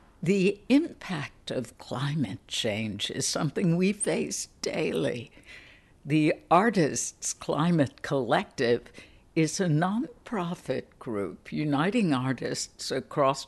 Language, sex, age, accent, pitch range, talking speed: English, female, 60-79, American, 130-165 Hz, 95 wpm